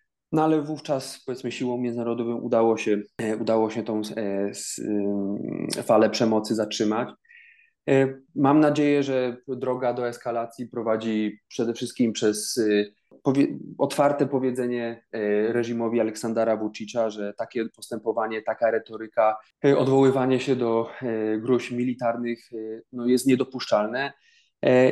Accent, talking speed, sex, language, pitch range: native, 130 wpm, male, Polish, 115-140 Hz